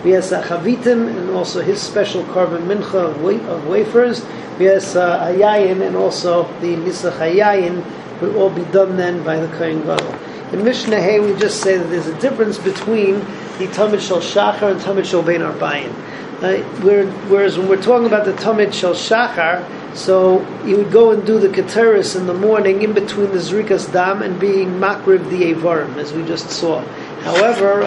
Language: English